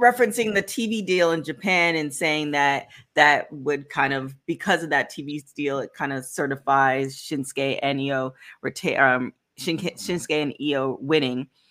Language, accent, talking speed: English, American, 155 wpm